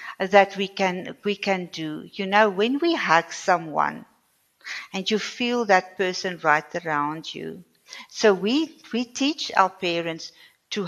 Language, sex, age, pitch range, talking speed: English, female, 60-79, 170-210 Hz, 150 wpm